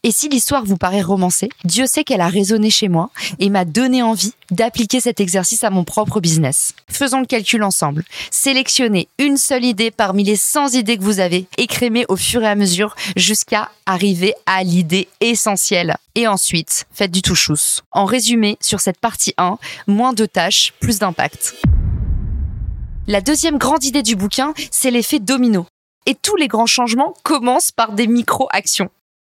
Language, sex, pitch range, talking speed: French, female, 190-265 Hz, 170 wpm